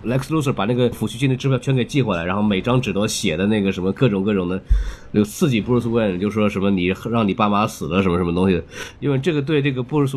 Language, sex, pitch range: Chinese, male, 105-140 Hz